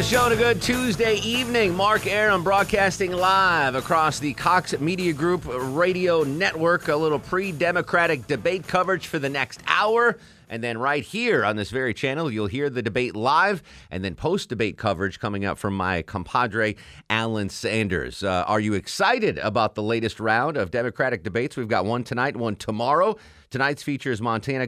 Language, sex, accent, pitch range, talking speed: English, male, American, 110-165 Hz, 175 wpm